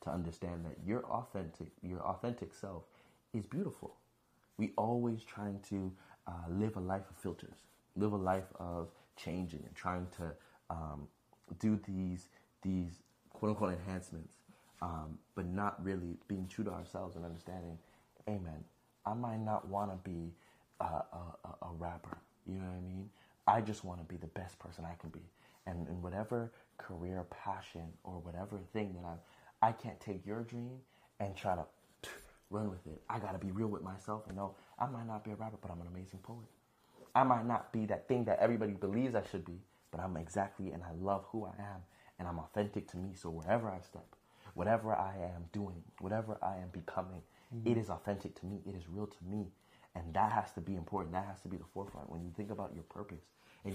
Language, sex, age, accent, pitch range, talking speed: English, male, 30-49, American, 85-105 Hz, 200 wpm